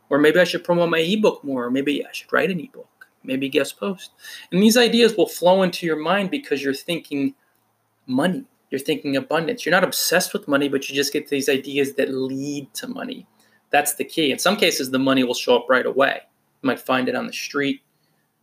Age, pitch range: 20-39, 135-180 Hz